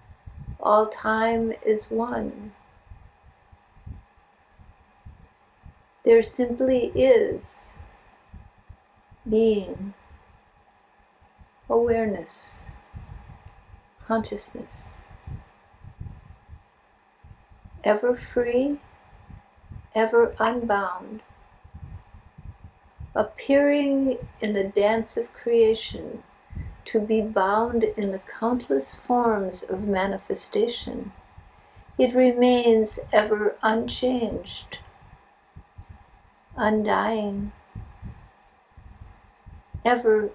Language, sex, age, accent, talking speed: English, female, 60-79, American, 50 wpm